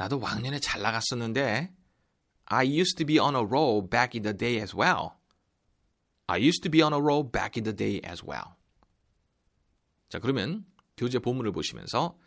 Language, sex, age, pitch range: Korean, male, 30-49, 105-140 Hz